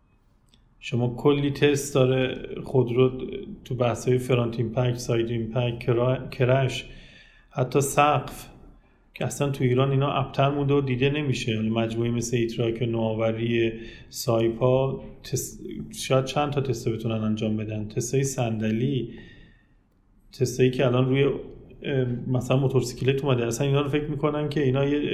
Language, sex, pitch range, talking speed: Persian, male, 120-140 Hz, 135 wpm